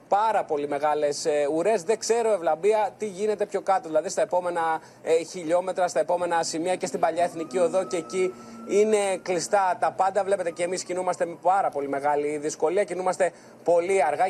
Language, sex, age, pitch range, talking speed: Greek, male, 30-49, 160-195 Hz, 170 wpm